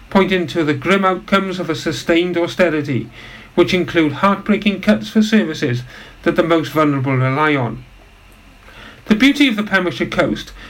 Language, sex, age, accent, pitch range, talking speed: English, male, 50-69, British, 150-190 Hz, 150 wpm